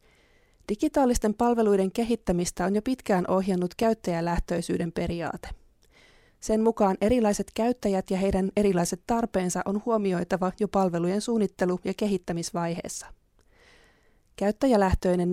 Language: Finnish